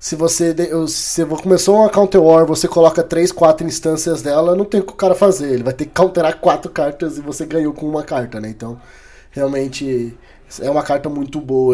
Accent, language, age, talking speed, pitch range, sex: Brazilian, Portuguese, 20-39, 205 wpm, 145-185 Hz, male